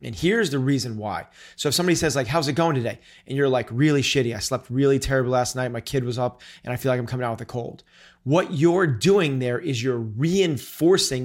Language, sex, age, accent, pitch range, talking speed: English, male, 30-49, American, 125-155 Hz, 245 wpm